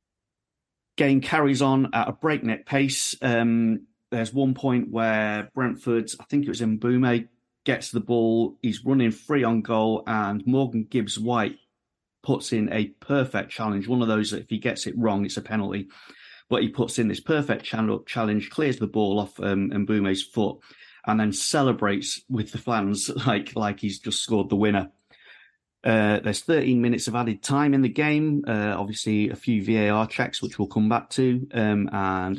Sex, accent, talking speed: male, British, 180 wpm